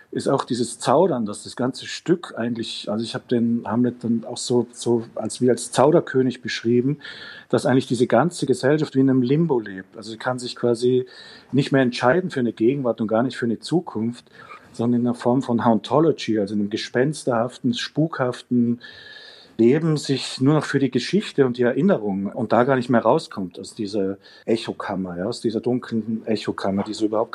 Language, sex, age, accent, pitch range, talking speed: German, male, 40-59, German, 110-130 Hz, 190 wpm